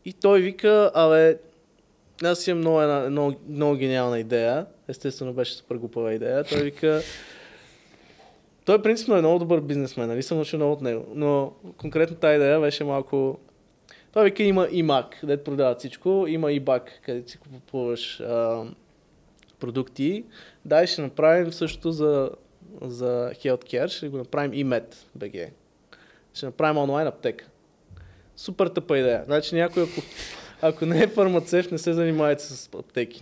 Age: 20-39